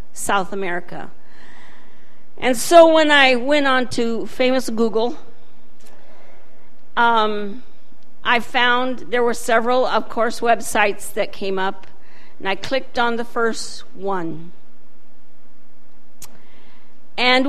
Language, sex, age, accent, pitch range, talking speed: English, female, 50-69, American, 200-255 Hz, 105 wpm